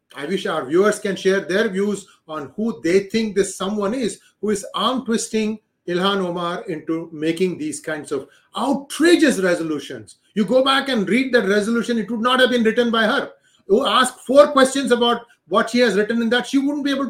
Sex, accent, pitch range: male, Indian, 180-245 Hz